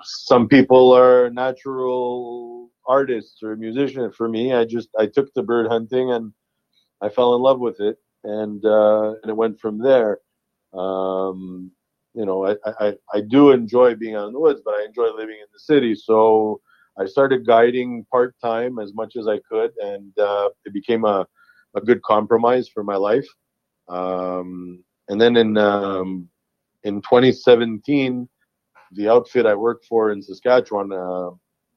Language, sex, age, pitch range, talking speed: English, male, 40-59, 105-125 Hz, 160 wpm